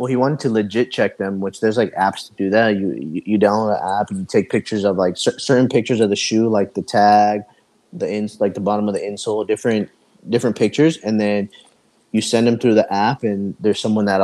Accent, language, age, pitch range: American, English, 20-39, 100-115 Hz